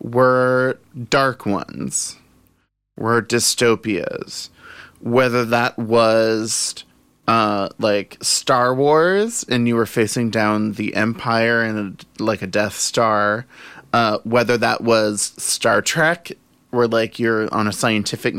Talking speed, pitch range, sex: 115 wpm, 110-130 Hz, male